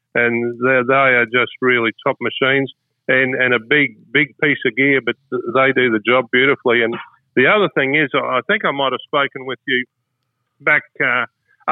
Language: English